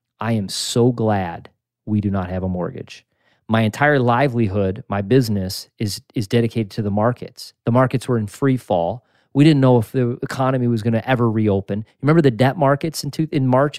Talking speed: 200 wpm